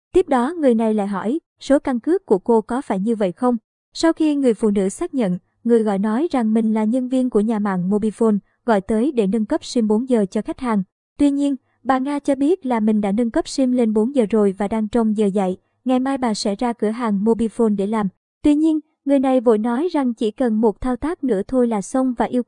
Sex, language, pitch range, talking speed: male, Vietnamese, 220-265 Hz, 255 wpm